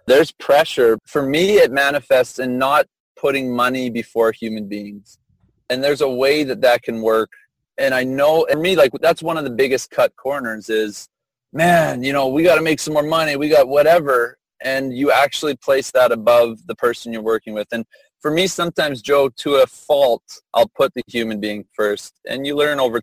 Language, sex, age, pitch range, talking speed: English, male, 30-49, 110-140 Hz, 200 wpm